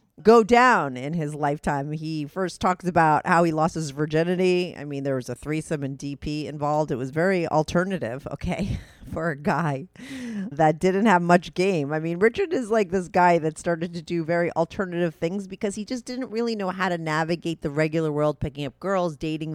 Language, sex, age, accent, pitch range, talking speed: English, female, 30-49, American, 145-200 Hz, 205 wpm